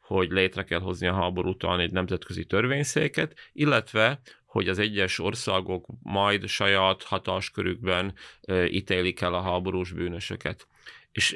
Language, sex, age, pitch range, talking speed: Hungarian, male, 30-49, 90-110 Hz, 125 wpm